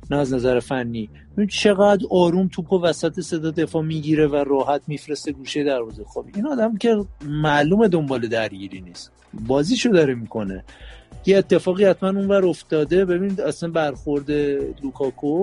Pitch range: 130-175 Hz